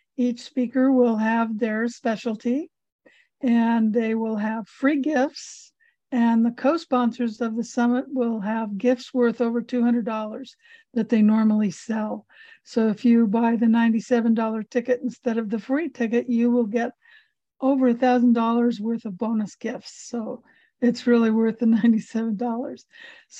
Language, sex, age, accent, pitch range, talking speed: English, female, 60-79, American, 230-260 Hz, 140 wpm